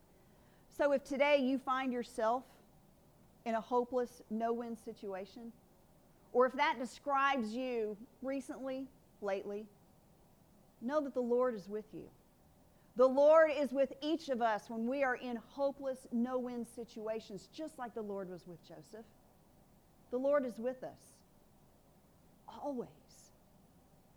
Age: 40-59